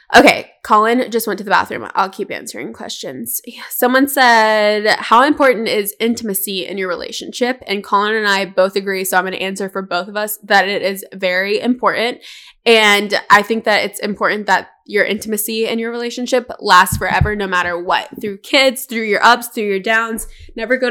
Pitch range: 200-245 Hz